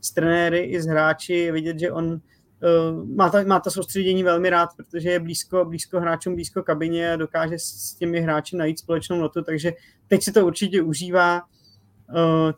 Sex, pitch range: male, 155-170 Hz